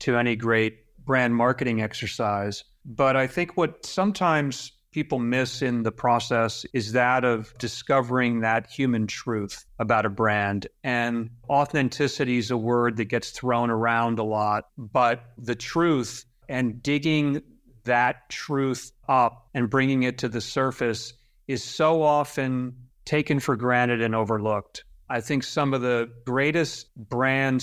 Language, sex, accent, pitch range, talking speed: English, male, American, 115-130 Hz, 145 wpm